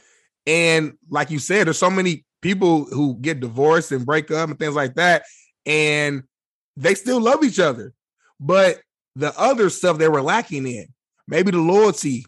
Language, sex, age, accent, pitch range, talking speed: English, male, 20-39, American, 135-165 Hz, 170 wpm